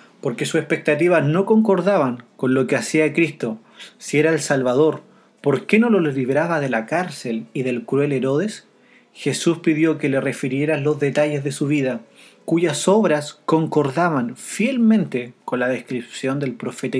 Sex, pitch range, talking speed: male, 135-180 Hz, 160 wpm